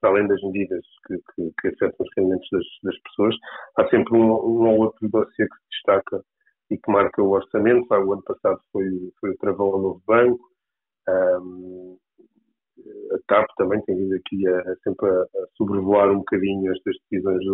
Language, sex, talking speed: Portuguese, male, 180 wpm